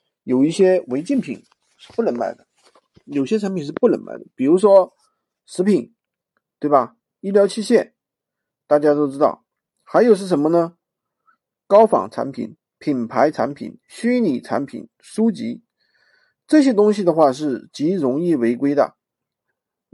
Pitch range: 140-220 Hz